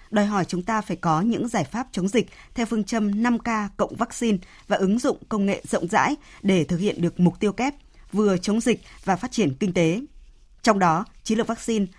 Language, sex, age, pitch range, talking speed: Vietnamese, female, 20-39, 180-230 Hz, 220 wpm